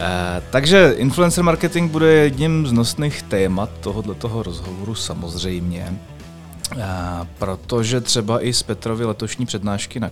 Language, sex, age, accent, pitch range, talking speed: Czech, male, 30-49, native, 90-115 Hz, 115 wpm